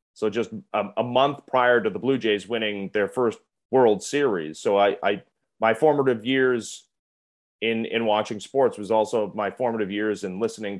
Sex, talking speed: male, 180 wpm